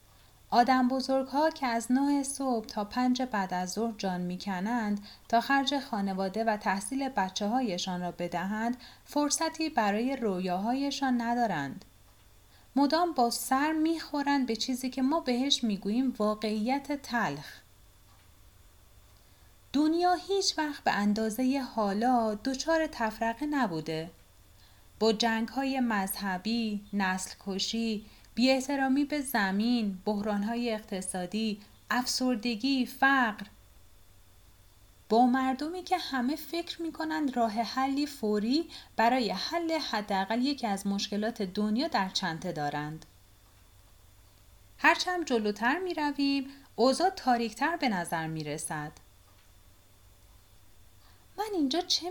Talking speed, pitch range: 110 wpm, 175-265 Hz